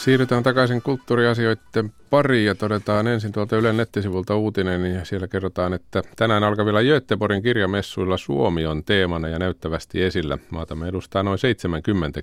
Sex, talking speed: male, 150 wpm